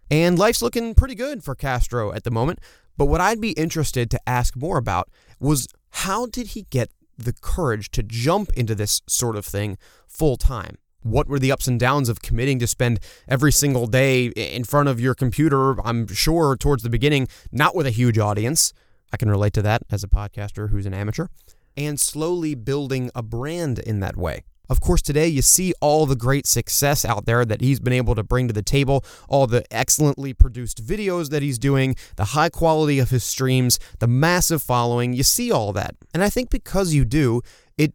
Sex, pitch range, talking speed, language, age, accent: male, 115-150 Hz, 205 wpm, English, 20-39, American